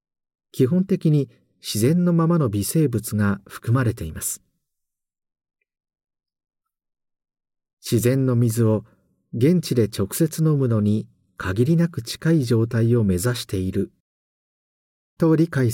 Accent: native